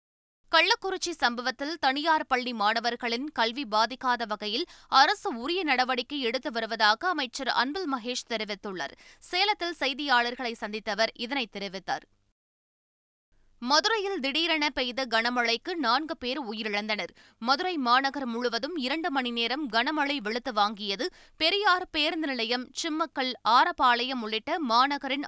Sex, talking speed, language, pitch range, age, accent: female, 105 wpm, Tamil, 225-290 Hz, 20-39, native